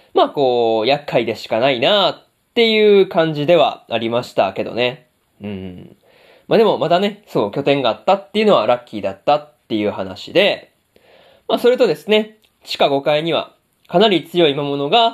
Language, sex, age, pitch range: Japanese, male, 20-39, 140-200 Hz